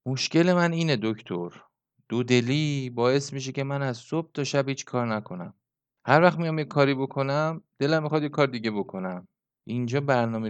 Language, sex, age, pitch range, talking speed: Persian, male, 30-49, 95-135 Hz, 170 wpm